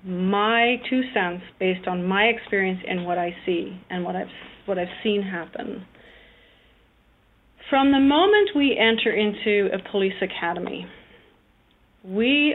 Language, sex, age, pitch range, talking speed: English, female, 40-59, 195-235 Hz, 135 wpm